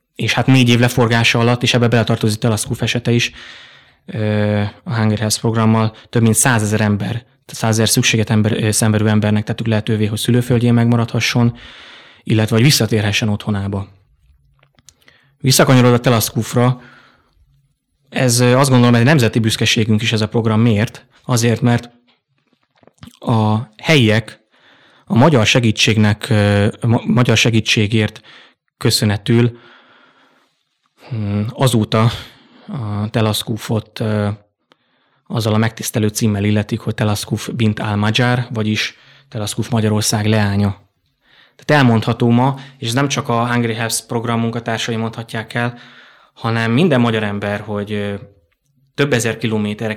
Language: Hungarian